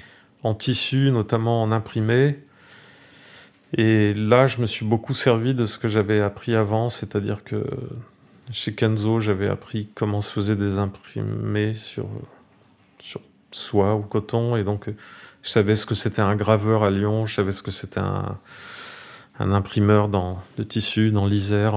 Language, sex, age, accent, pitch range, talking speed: French, male, 30-49, French, 105-130 Hz, 160 wpm